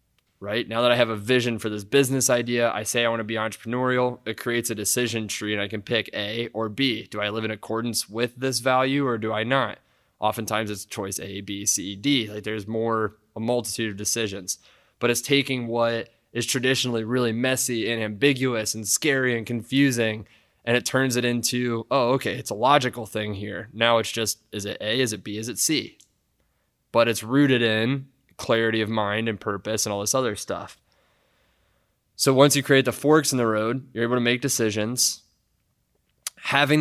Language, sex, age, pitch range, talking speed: English, male, 20-39, 110-125 Hz, 200 wpm